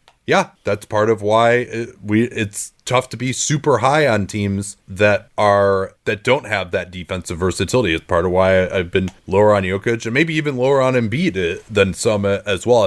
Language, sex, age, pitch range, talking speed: English, male, 30-49, 95-115 Hz, 195 wpm